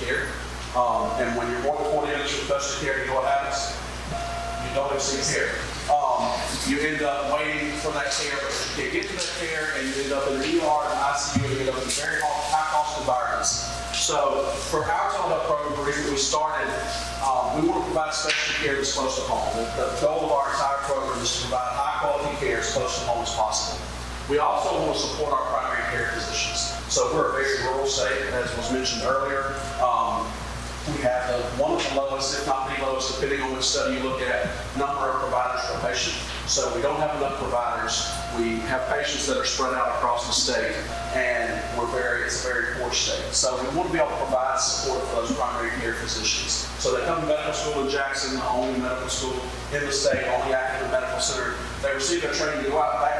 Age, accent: 40-59, American